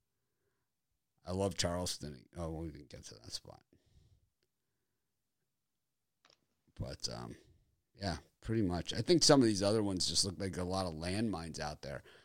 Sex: male